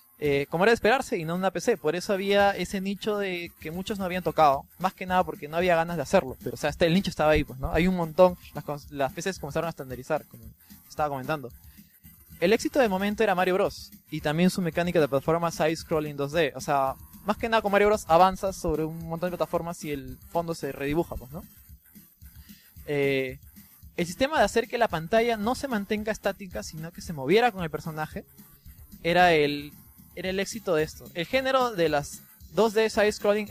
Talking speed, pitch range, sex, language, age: 215 wpm, 155-205 Hz, male, Spanish, 20-39